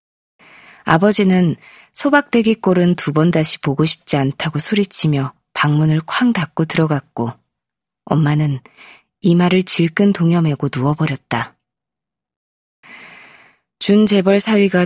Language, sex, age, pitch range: Korean, female, 20-39, 150-195 Hz